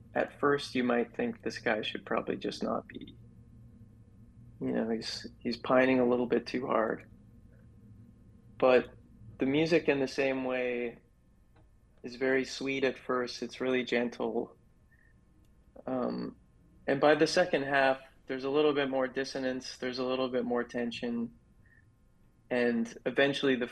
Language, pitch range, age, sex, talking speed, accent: English, 115-130 Hz, 20-39, male, 145 wpm, American